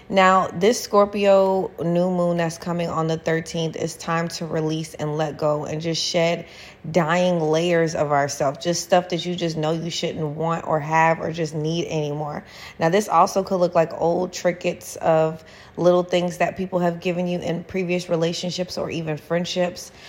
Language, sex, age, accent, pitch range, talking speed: English, female, 30-49, American, 160-180 Hz, 180 wpm